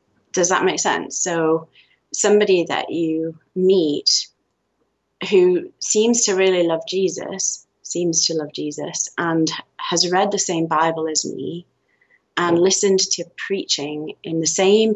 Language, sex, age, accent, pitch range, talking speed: English, female, 30-49, British, 160-190 Hz, 135 wpm